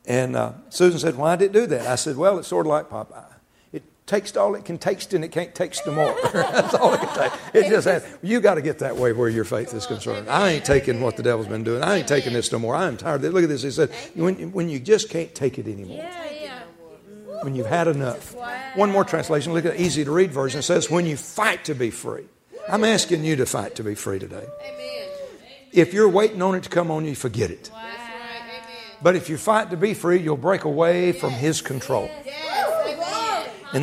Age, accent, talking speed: 60-79, American, 230 wpm